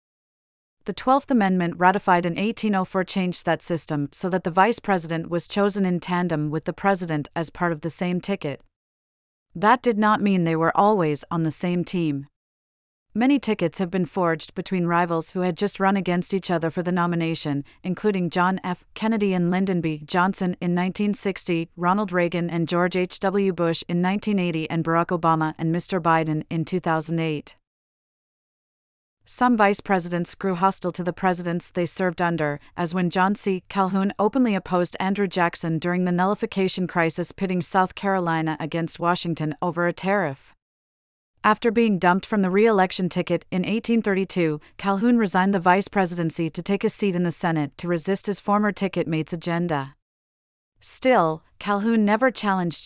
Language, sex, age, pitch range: English, female, 30-49, 165-195 Hz